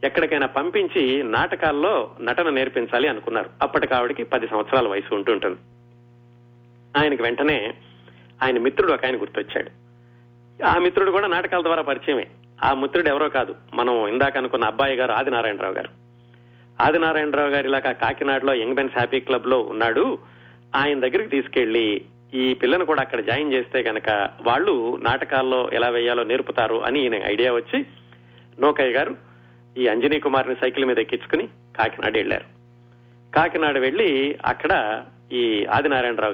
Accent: native